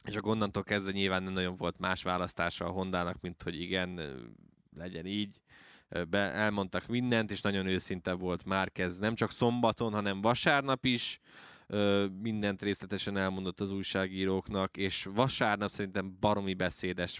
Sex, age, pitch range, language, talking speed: male, 20-39, 95-105 Hz, Hungarian, 145 wpm